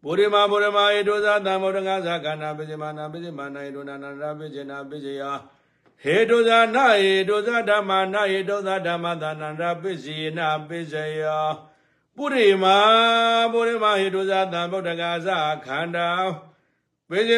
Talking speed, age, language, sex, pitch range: 80 wpm, 60-79, English, male, 155-205 Hz